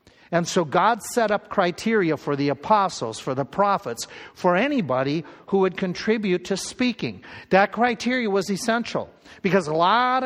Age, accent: 60-79, American